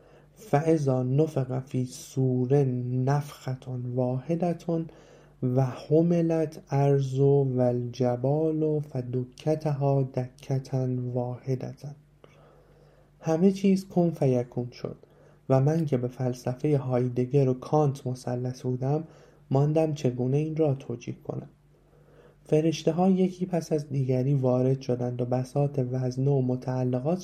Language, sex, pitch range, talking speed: Persian, male, 125-155 Hz, 110 wpm